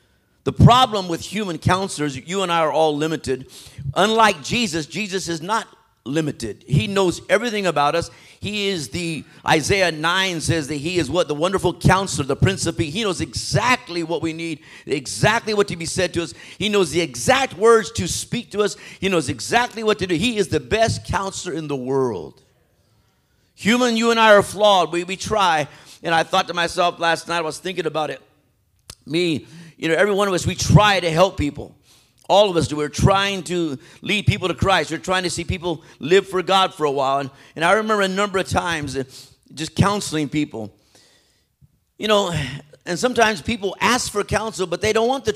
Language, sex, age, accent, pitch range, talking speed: English, male, 50-69, American, 150-200 Hz, 200 wpm